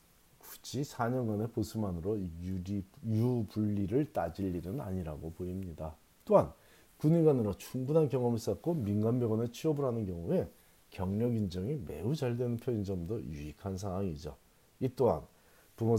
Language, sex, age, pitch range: Korean, male, 40-59, 90-120 Hz